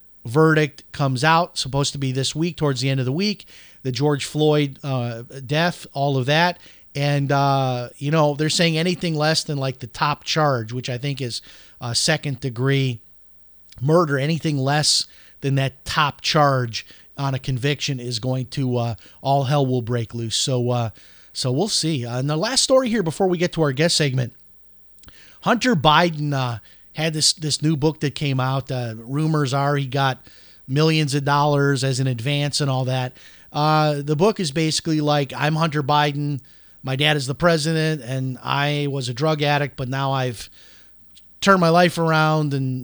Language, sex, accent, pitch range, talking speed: English, male, American, 130-155 Hz, 185 wpm